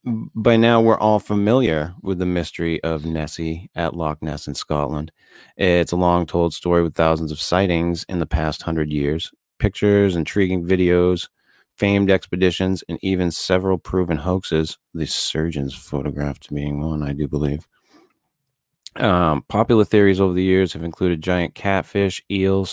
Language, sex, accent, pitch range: English, male, American, 85-105 Hz